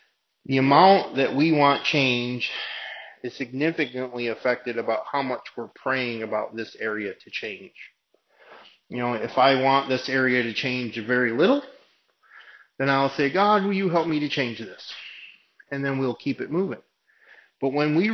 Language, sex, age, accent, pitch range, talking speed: English, male, 30-49, American, 115-135 Hz, 165 wpm